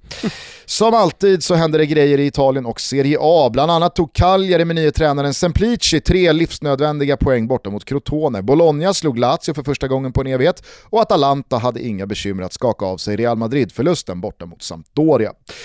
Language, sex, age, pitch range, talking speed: Swedish, male, 30-49, 130-175 Hz, 185 wpm